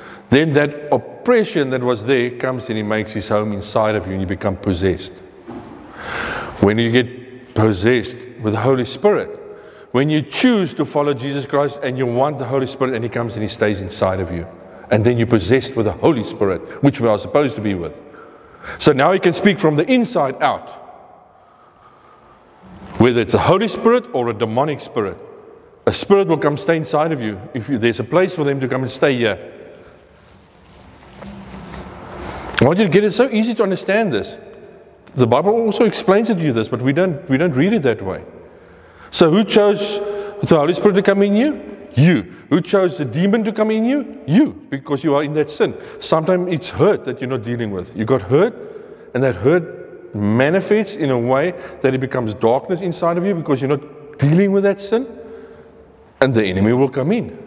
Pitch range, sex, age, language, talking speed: 120-205 Hz, male, 40-59, English, 200 wpm